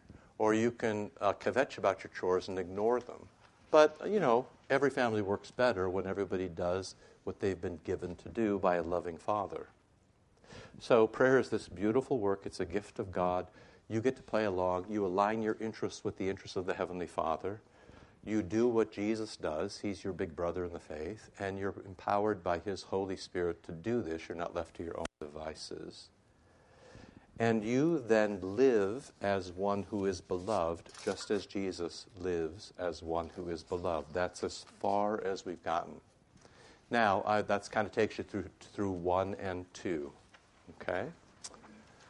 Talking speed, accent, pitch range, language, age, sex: 175 wpm, American, 90-110 Hz, English, 60-79, male